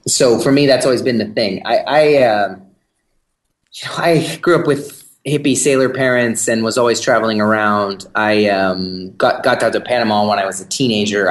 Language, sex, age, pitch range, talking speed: English, male, 30-49, 105-125 Hz, 185 wpm